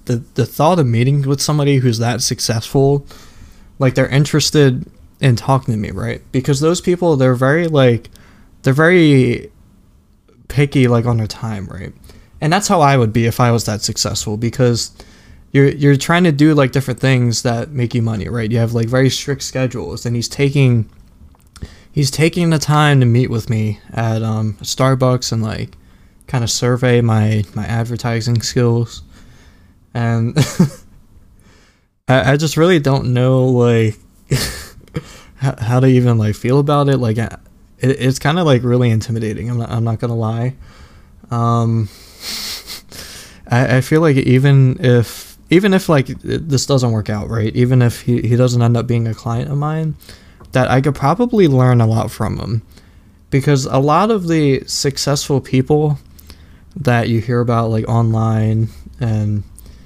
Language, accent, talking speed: English, American, 170 wpm